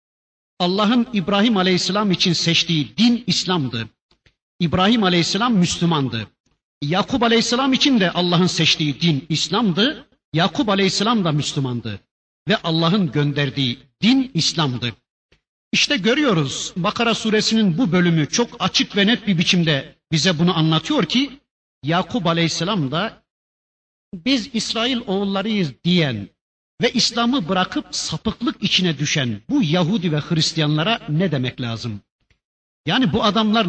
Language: Turkish